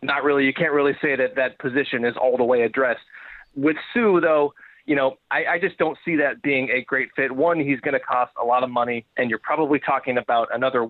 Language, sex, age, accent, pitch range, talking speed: English, male, 30-49, American, 130-150 Hz, 240 wpm